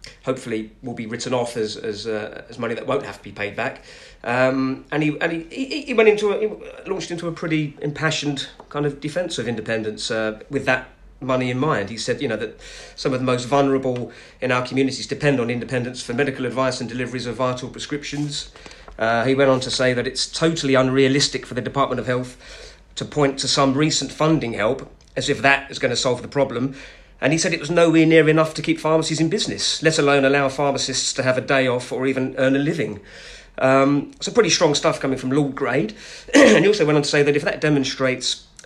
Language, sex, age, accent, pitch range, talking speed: English, male, 40-59, British, 125-150 Hz, 230 wpm